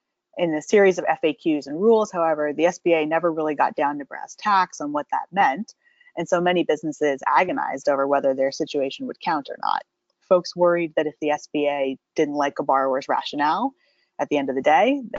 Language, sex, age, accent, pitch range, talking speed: English, female, 20-39, American, 145-175 Hz, 200 wpm